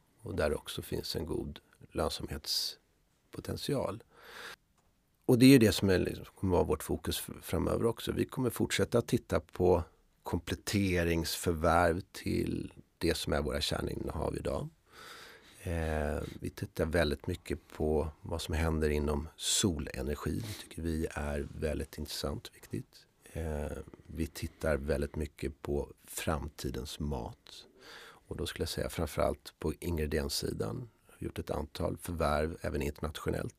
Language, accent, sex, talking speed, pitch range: Swedish, native, male, 140 wpm, 75-95 Hz